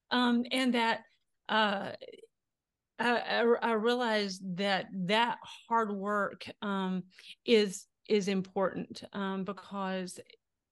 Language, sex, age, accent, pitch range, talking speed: English, female, 40-59, American, 185-220 Hz, 95 wpm